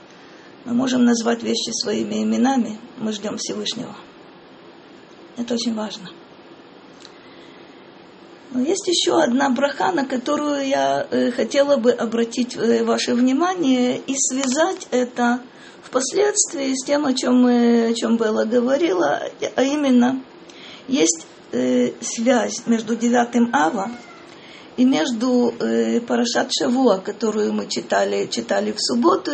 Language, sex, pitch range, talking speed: Russian, female, 230-270 Hz, 110 wpm